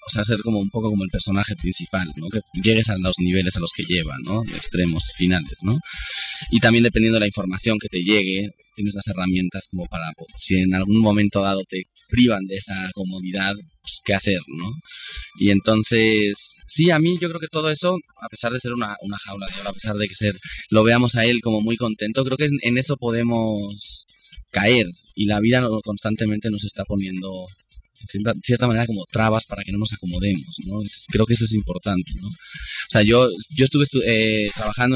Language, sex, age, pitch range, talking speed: Spanish, male, 30-49, 95-120 Hz, 205 wpm